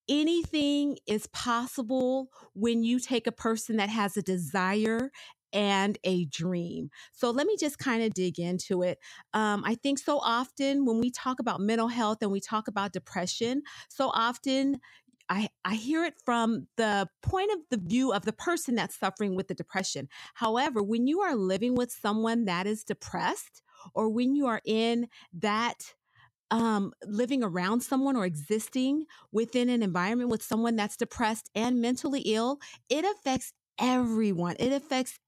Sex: female